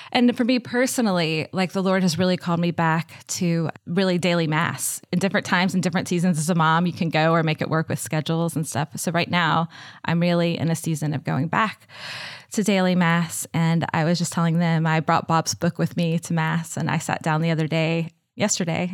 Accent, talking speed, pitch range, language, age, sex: American, 230 wpm, 165-185 Hz, English, 20-39, female